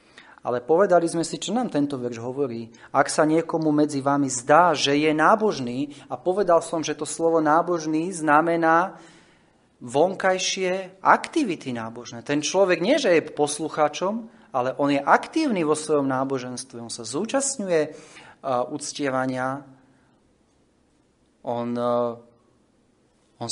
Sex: male